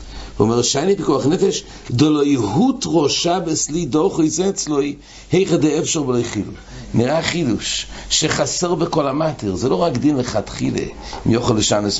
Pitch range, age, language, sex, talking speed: 105-150 Hz, 60-79, English, male, 145 wpm